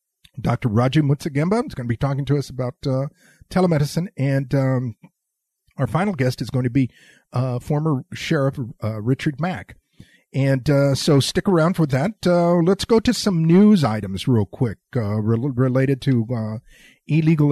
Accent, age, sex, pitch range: American, 50-69, male, 120-175 Hz